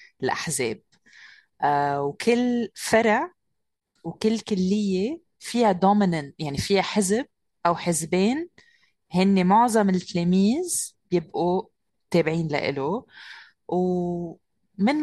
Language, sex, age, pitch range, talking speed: Arabic, female, 20-39, 150-215 Hz, 80 wpm